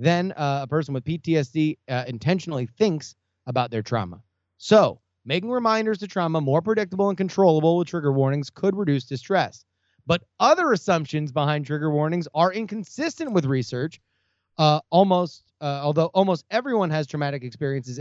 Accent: American